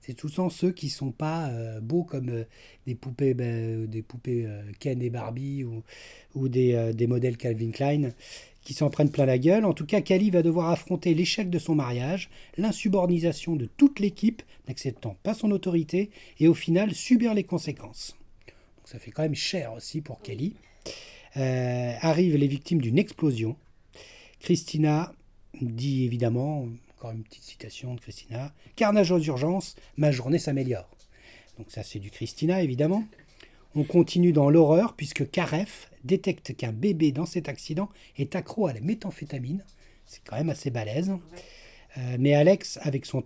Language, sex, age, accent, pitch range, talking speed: French, male, 30-49, French, 120-175 Hz, 170 wpm